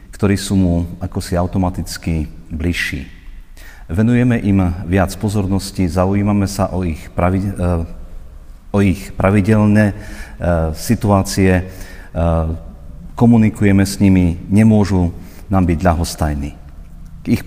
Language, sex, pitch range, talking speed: Slovak, male, 85-100 Hz, 95 wpm